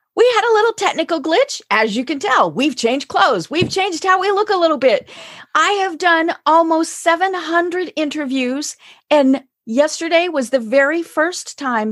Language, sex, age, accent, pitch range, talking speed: English, female, 40-59, American, 240-335 Hz, 170 wpm